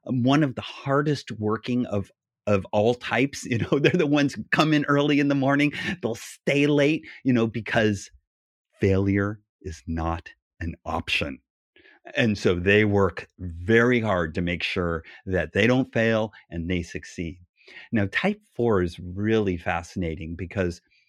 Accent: American